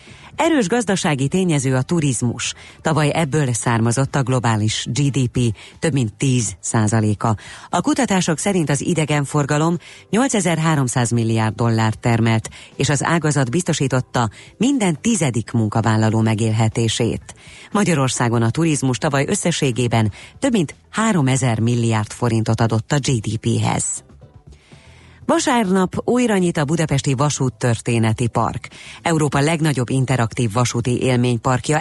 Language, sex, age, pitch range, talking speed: Hungarian, female, 30-49, 115-160 Hz, 110 wpm